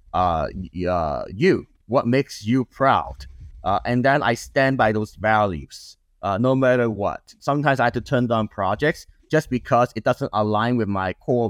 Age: 30-49